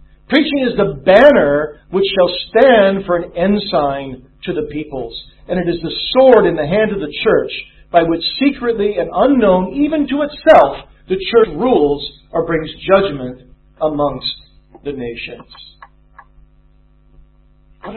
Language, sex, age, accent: English, male, 50-69, American